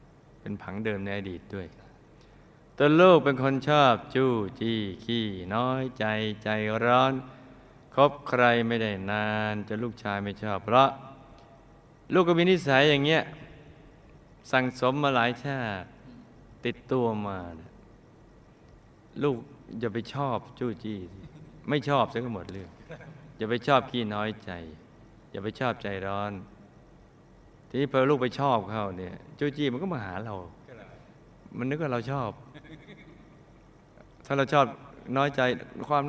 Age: 20-39